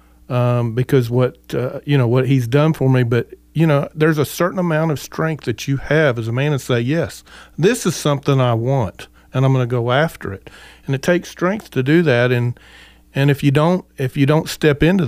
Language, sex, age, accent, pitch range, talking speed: English, male, 40-59, American, 115-145 Hz, 230 wpm